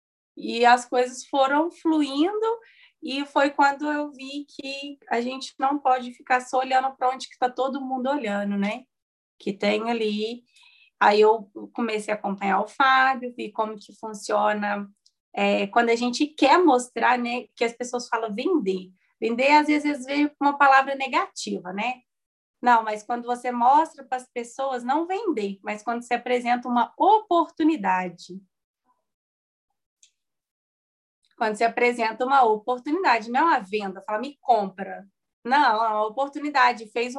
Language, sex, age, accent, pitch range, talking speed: Portuguese, female, 20-39, Brazilian, 225-280 Hz, 150 wpm